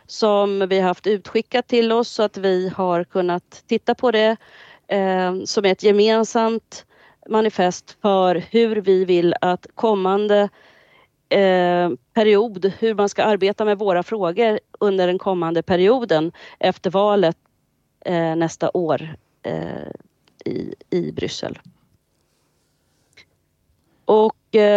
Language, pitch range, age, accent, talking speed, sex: Swedish, 190-225 Hz, 40-59, native, 110 wpm, female